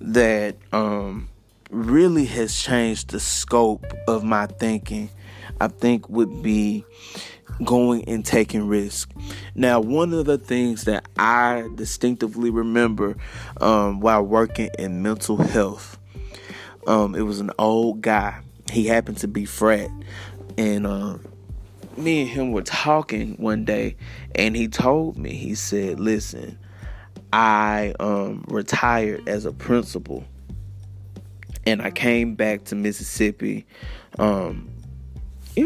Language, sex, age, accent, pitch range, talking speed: English, male, 20-39, American, 100-120 Hz, 125 wpm